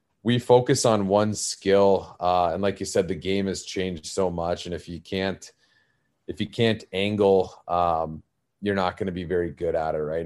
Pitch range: 90-100 Hz